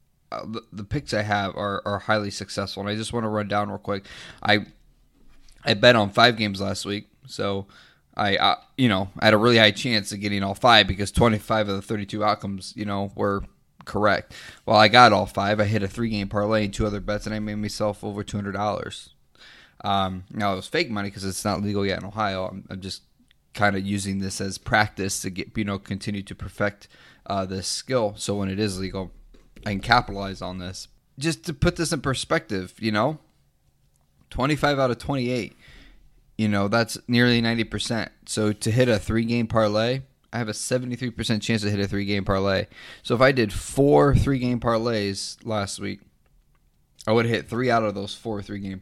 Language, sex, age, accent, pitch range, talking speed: English, male, 20-39, American, 100-115 Hz, 205 wpm